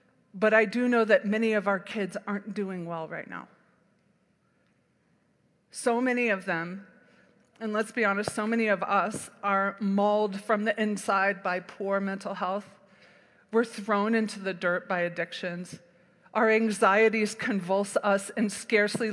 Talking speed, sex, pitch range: 150 wpm, female, 195-230 Hz